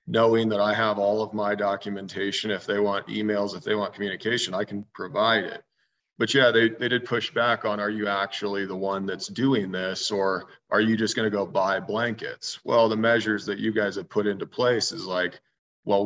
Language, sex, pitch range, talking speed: English, male, 100-110 Hz, 215 wpm